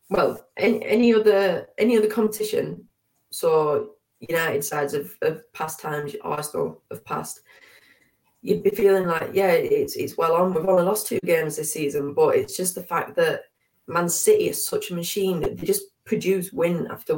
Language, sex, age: English, female, 20-39